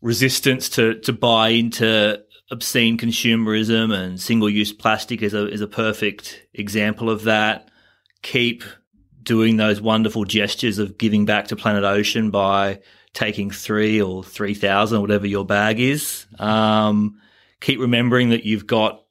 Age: 30-49